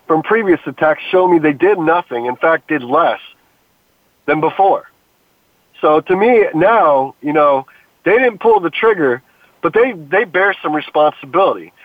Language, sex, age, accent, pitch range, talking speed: English, male, 40-59, American, 150-190 Hz, 155 wpm